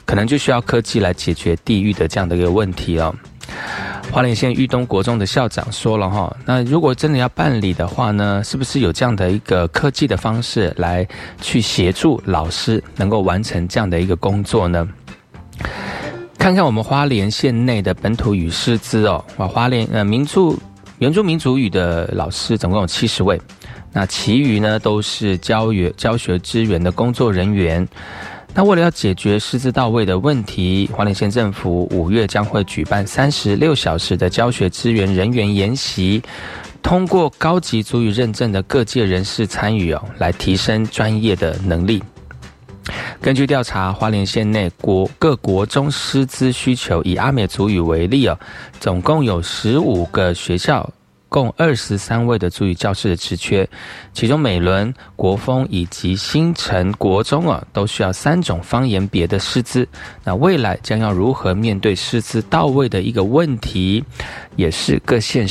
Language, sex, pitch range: Chinese, male, 95-125 Hz